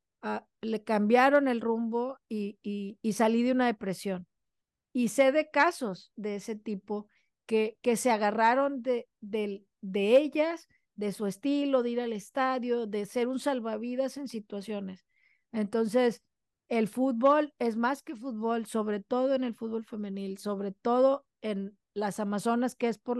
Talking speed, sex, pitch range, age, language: 160 wpm, female, 215-250 Hz, 40-59, Spanish